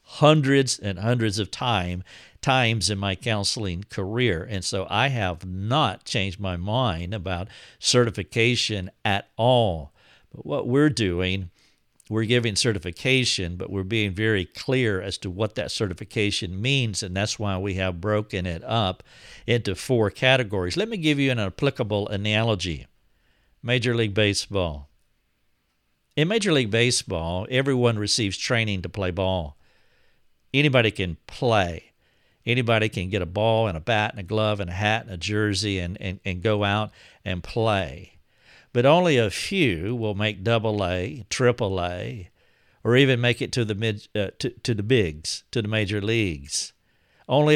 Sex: male